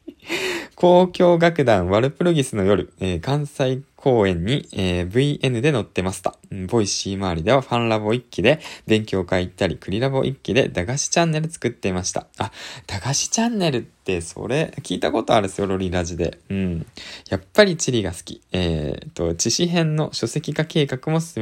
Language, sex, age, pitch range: Japanese, male, 20-39, 90-140 Hz